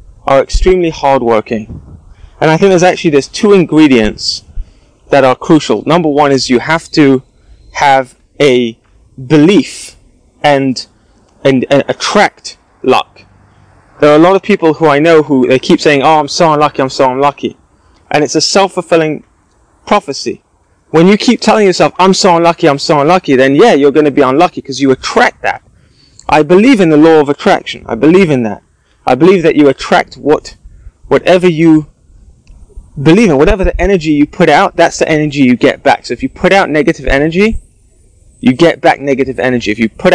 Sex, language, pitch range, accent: male, English, 120-165 Hz, British